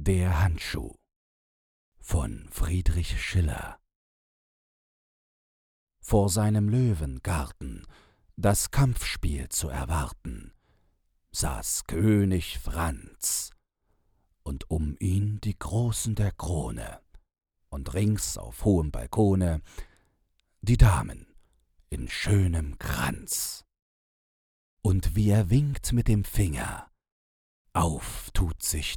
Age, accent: 40-59, German